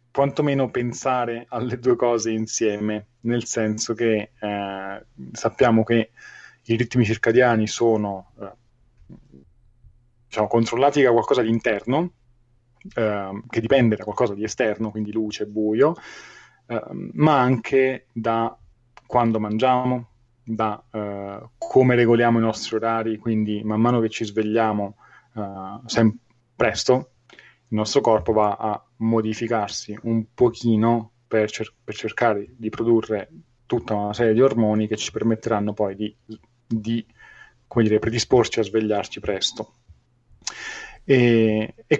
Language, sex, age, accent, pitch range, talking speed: Italian, male, 20-39, native, 110-120 Hz, 125 wpm